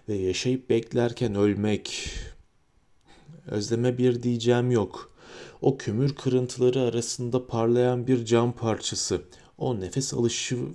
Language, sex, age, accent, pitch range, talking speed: Turkish, male, 40-59, native, 100-125 Hz, 105 wpm